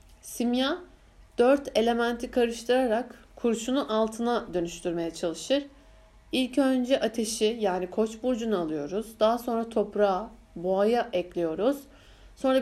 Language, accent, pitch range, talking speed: Turkish, native, 210-255 Hz, 100 wpm